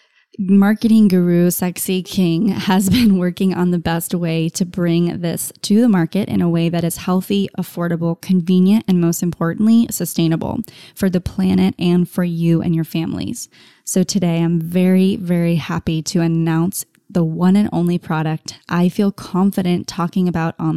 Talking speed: 165 wpm